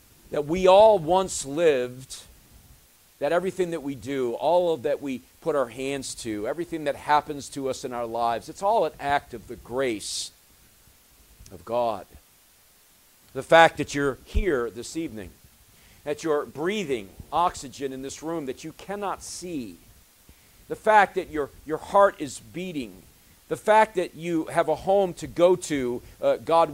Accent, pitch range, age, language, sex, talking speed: American, 115-175 Hz, 50-69, English, male, 165 wpm